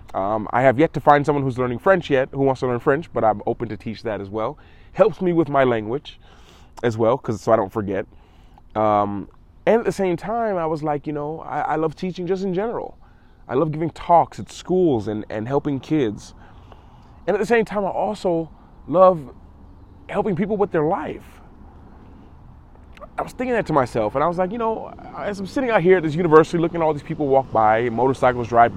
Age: 20-39